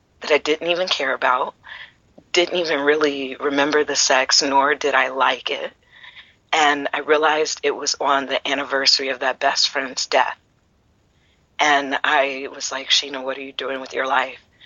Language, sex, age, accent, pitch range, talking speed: English, female, 40-59, American, 135-165 Hz, 170 wpm